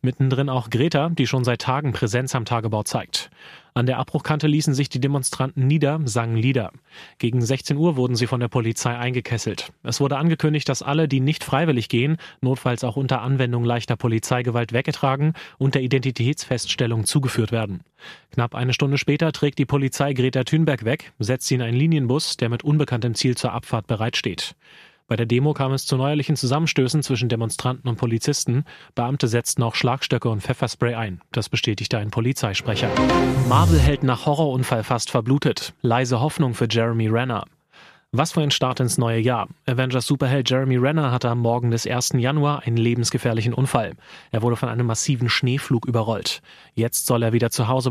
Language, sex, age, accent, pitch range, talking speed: German, male, 30-49, German, 120-140 Hz, 175 wpm